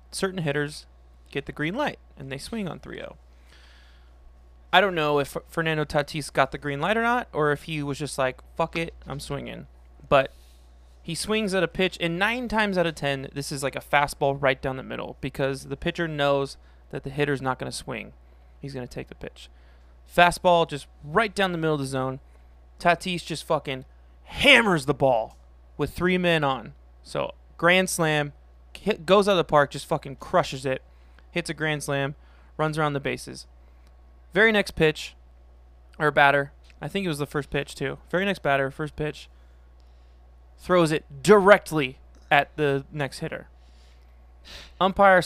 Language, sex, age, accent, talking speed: English, male, 20-39, American, 180 wpm